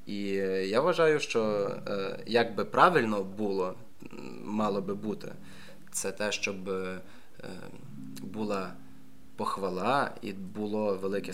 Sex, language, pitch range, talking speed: male, Ukrainian, 95-115 Hz, 100 wpm